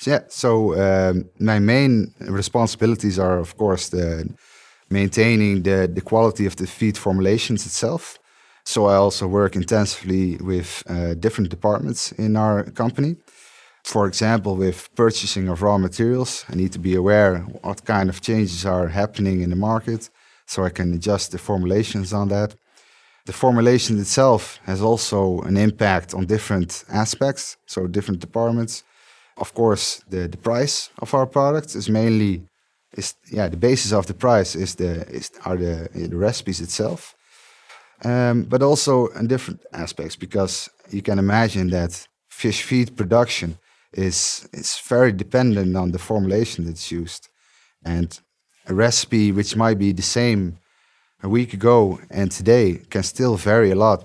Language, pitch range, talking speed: English, 95-115 Hz, 155 wpm